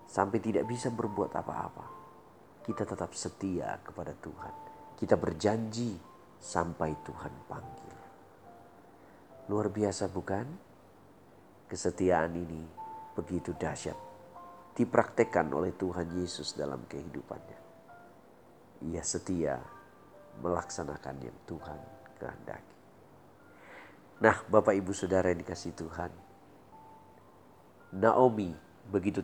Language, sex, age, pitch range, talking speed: Indonesian, male, 40-59, 85-110 Hz, 85 wpm